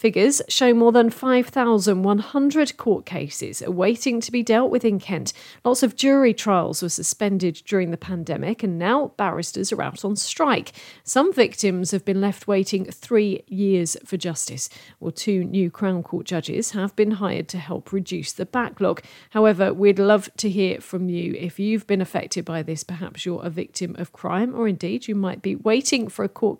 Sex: female